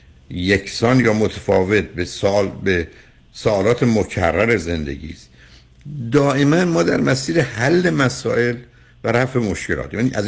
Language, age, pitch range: Persian, 60-79, 100-130 Hz